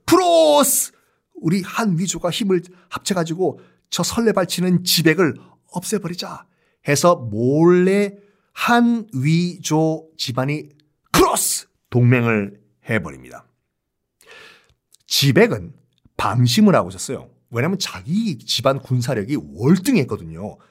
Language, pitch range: Korean, 125-200 Hz